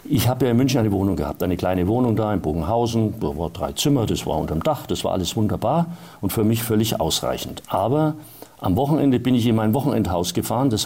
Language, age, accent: German, 50-69, German